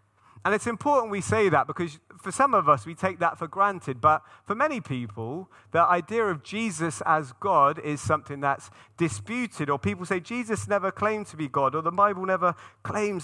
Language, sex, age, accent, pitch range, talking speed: English, male, 30-49, British, 140-200 Hz, 200 wpm